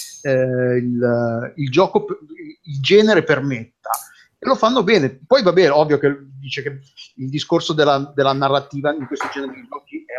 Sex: male